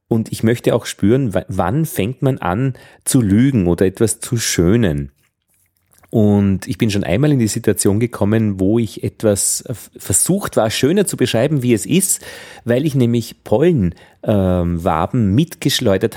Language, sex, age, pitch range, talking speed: German, male, 40-59, 95-120 Hz, 150 wpm